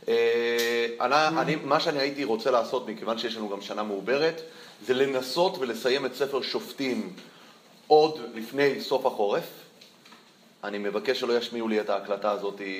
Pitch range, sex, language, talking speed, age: 115-155 Hz, male, Hebrew, 145 wpm, 30-49